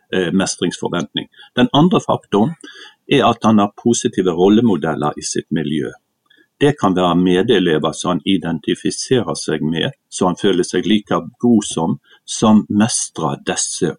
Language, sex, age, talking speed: English, male, 50-69, 135 wpm